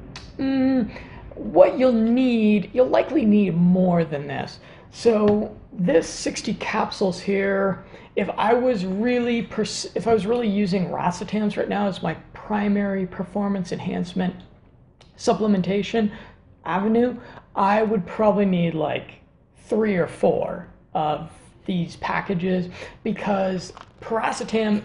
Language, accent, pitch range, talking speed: English, American, 170-215 Hz, 105 wpm